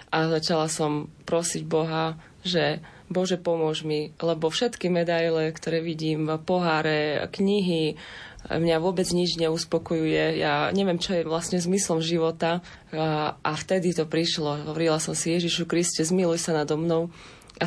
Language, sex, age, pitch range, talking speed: Slovak, female, 20-39, 160-180 Hz, 145 wpm